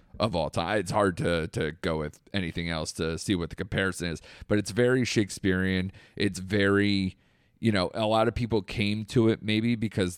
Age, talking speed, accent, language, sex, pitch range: 30-49, 200 wpm, American, English, male, 90-105 Hz